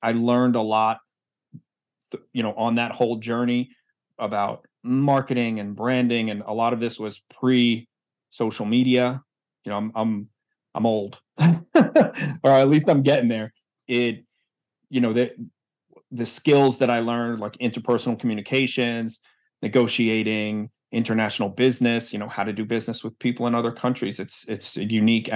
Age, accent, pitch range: 30-49, American, 110-125 Hz